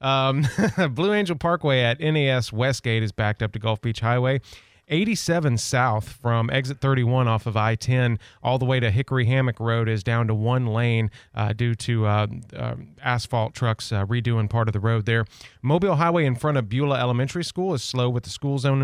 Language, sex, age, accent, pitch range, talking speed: English, male, 30-49, American, 110-140 Hz, 195 wpm